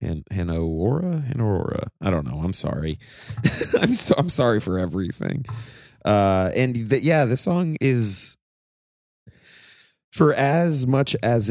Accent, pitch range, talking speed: American, 85-120 Hz, 130 wpm